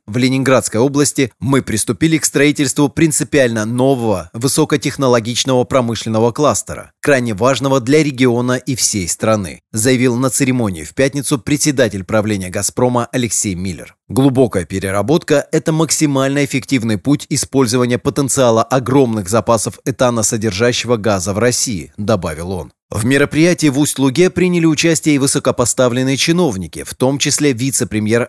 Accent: native